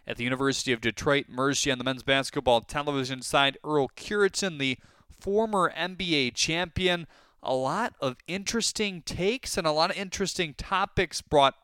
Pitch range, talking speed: 125-200 Hz, 155 wpm